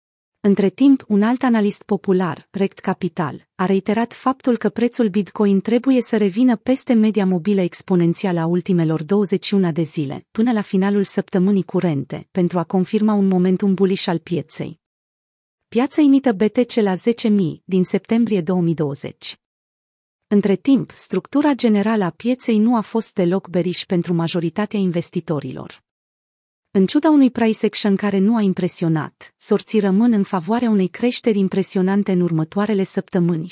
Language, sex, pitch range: Romanian, female, 180-220 Hz